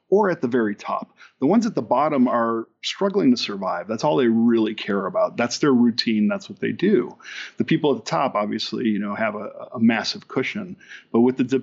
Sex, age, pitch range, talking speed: male, 40-59, 110-155 Hz, 220 wpm